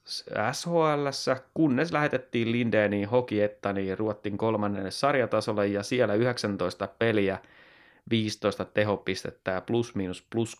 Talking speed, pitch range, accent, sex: 100 wpm, 105-125 Hz, native, male